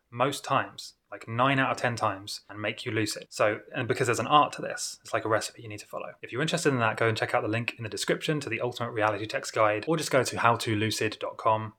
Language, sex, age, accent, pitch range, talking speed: English, male, 20-39, British, 110-135 Hz, 270 wpm